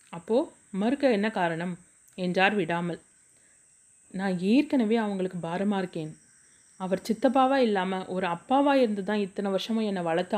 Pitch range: 175-220 Hz